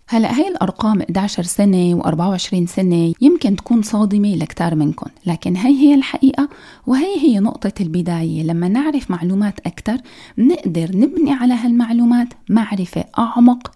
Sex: female